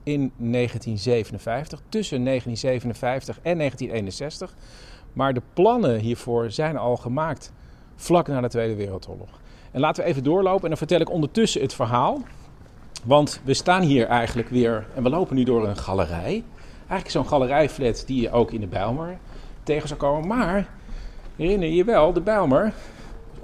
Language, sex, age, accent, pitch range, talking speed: Dutch, male, 40-59, Dutch, 115-165 Hz, 160 wpm